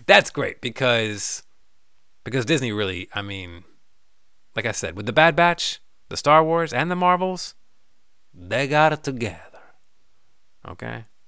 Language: English